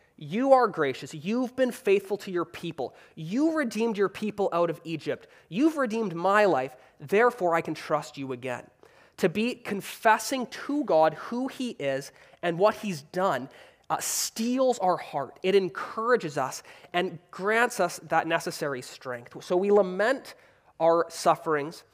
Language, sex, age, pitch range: English, male, 20-39, 160-220 Hz